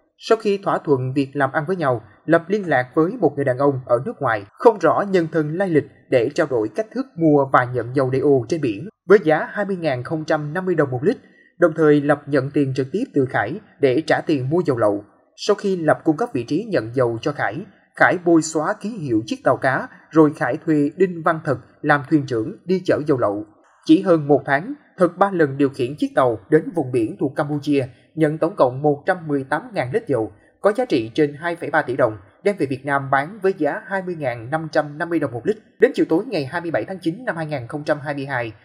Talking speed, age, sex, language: 215 wpm, 20-39, male, Vietnamese